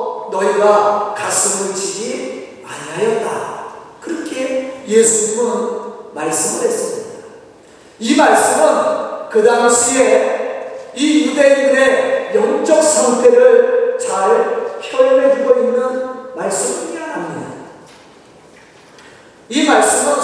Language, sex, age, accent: Korean, male, 40-59, native